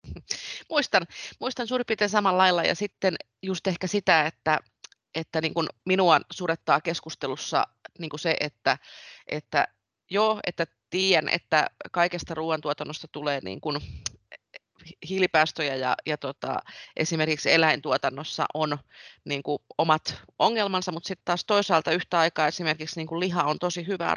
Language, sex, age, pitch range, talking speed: Finnish, female, 30-49, 150-180 Hz, 135 wpm